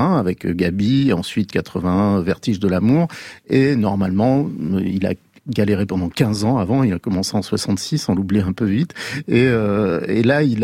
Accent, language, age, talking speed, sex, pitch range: French, French, 50-69, 175 wpm, male, 95-130 Hz